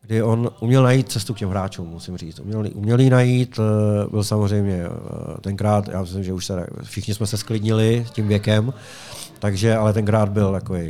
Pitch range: 105-120 Hz